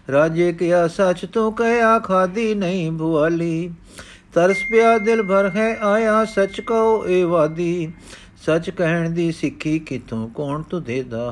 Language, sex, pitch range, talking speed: Punjabi, male, 140-195 Hz, 140 wpm